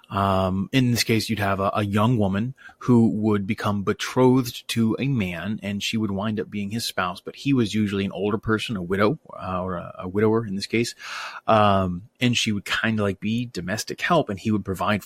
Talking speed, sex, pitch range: 225 wpm, male, 100-120 Hz